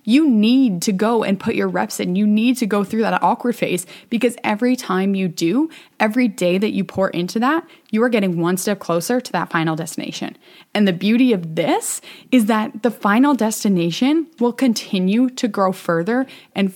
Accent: American